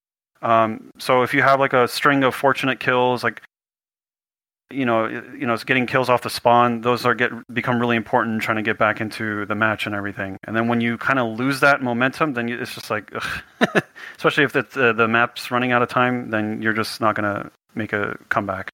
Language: English